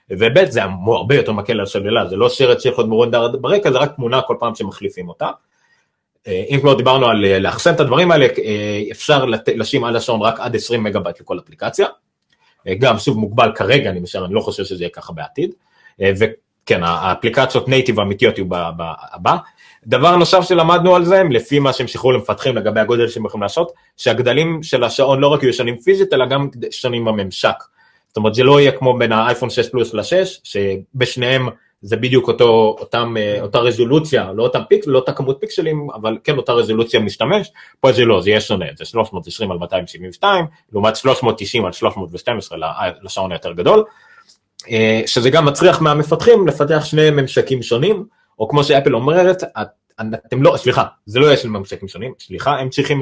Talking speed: 170 wpm